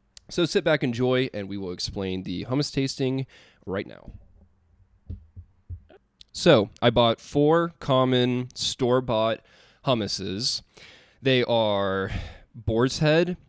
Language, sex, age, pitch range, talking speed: English, male, 20-39, 100-130 Hz, 105 wpm